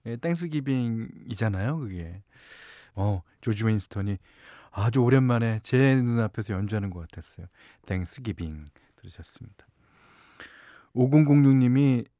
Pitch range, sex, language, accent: 100-140 Hz, male, Korean, native